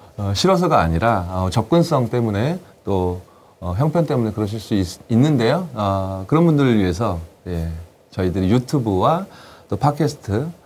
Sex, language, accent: male, Korean, native